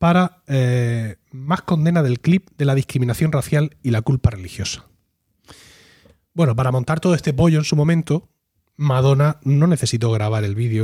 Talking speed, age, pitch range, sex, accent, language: 160 wpm, 30-49, 115-155 Hz, male, Spanish, Spanish